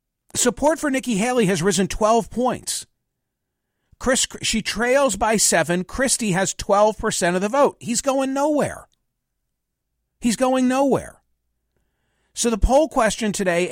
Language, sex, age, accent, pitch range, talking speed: English, male, 50-69, American, 180-225 Hz, 135 wpm